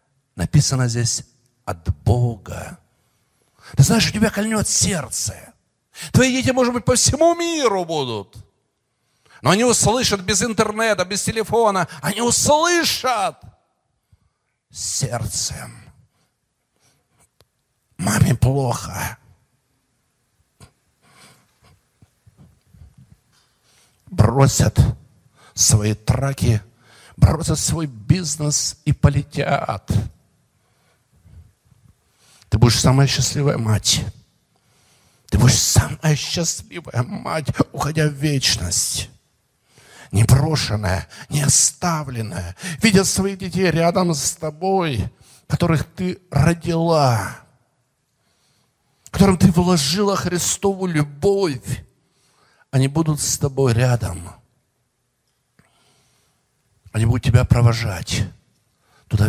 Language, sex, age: Russian, male, 50-69